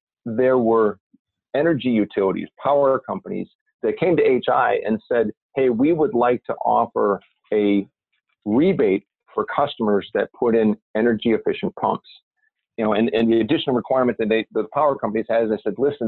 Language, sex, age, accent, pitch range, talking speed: English, male, 40-59, American, 110-130 Hz, 170 wpm